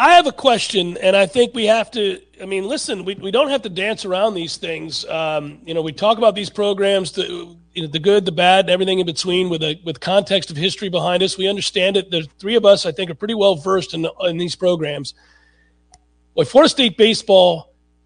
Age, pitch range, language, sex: 40-59, 170-230 Hz, English, male